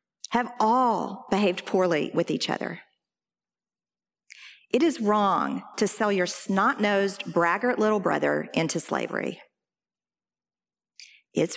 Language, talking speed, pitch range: English, 110 wpm, 180-235 Hz